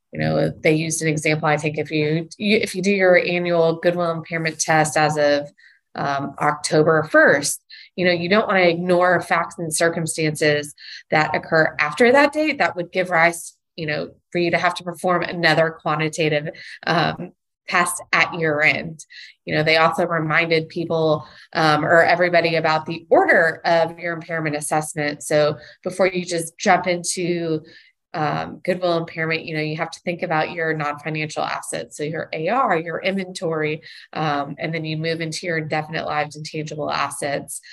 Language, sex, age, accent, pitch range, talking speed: English, female, 20-39, American, 155-175 Hz, 170 wpm